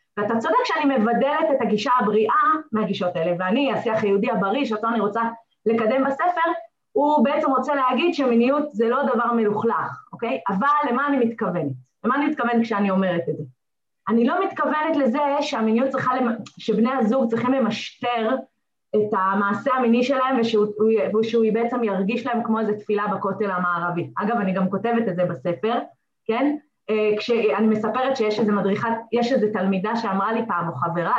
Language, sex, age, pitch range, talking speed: Hebrew, female, 20-39, 210-255 Hz, 165 wpm